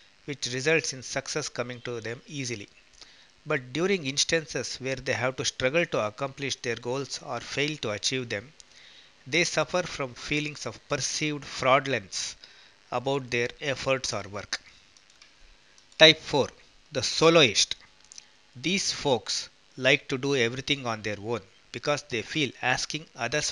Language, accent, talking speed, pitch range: English, Indian, 140 wpm, 120-145 Hz